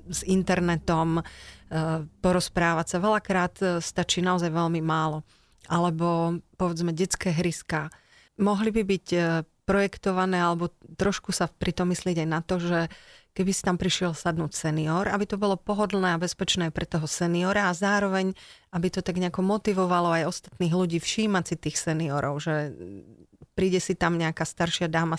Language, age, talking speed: Slovak, 30-49, 150 wpm